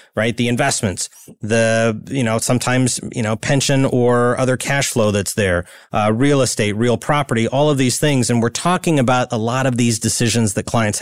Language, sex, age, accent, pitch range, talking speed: English, male, 30-49, American, 115-140 Hz, 195 wpm